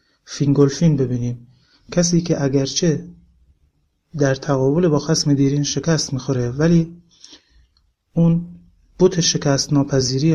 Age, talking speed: 30-49, 100 wpm